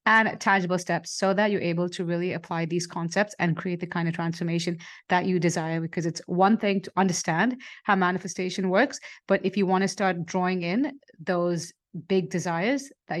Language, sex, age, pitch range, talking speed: English, female, 30-49, 175-200 Hz, 190 wpm